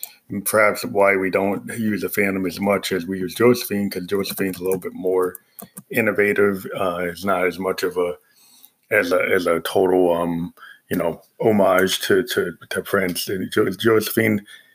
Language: English